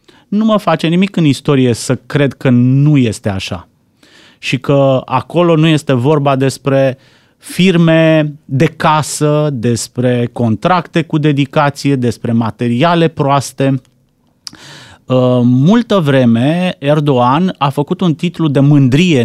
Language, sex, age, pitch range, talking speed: Romanian, male, 30-49, 130-165 Hz, 120 wpm